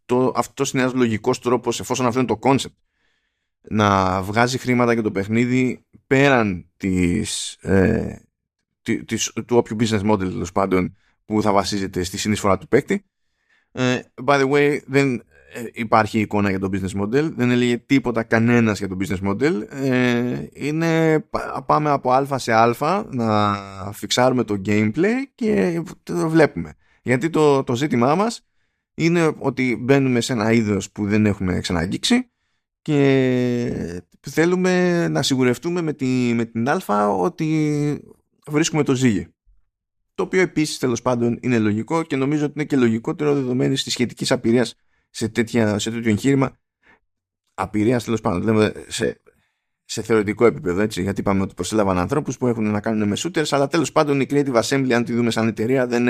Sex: male